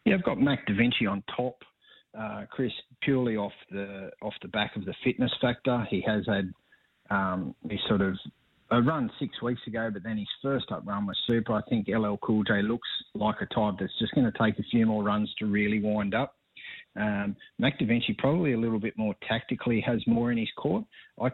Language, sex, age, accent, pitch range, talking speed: English, male, 30-49, Australian, 105-120 Hz, 215 wpm